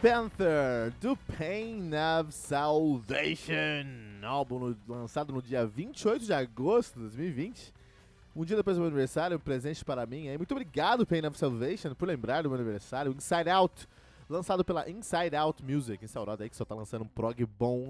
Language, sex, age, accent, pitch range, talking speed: Portuguese, male, 20-39, Brazilian, 115-170 Hz, 170 wpm